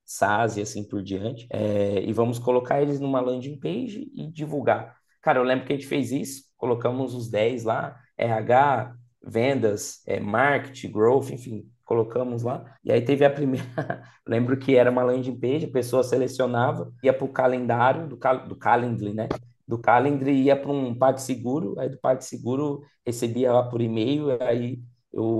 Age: 20-39